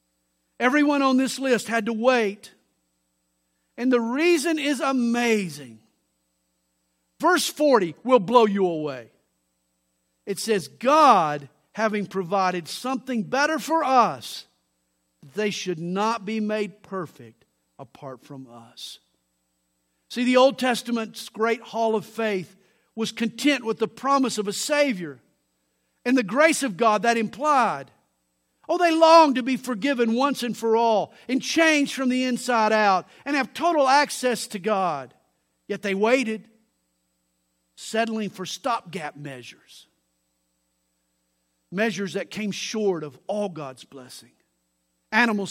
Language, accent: English, American